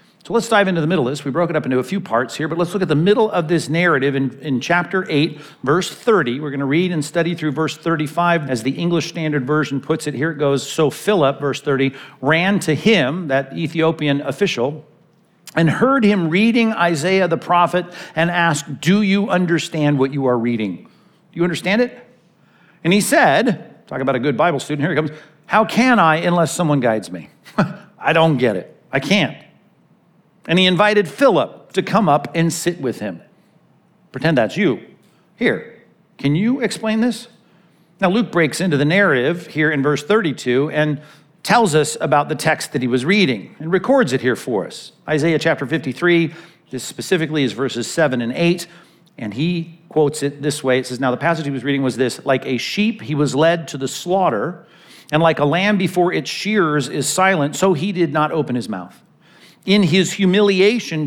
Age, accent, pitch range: 50-69, American, 145-185 Hz